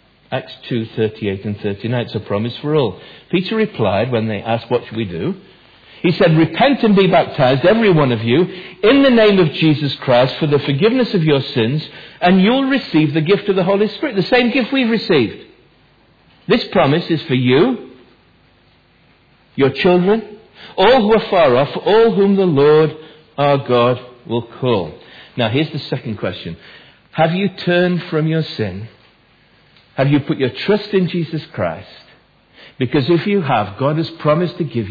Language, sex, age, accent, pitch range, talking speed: English, male, 60-79, British, 125-190 Hz, 180 wpm